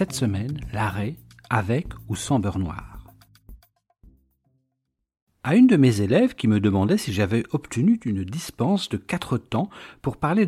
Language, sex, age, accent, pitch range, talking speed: French, male, 60-79, French, 105-155 Hz, 150 wpm